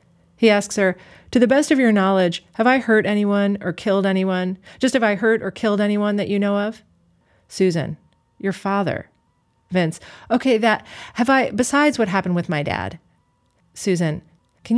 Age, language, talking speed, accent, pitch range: 40-59, English, 175 wpm, American, 175-210 Hz